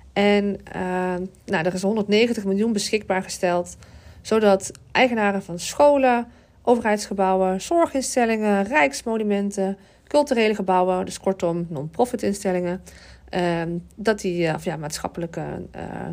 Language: Dutch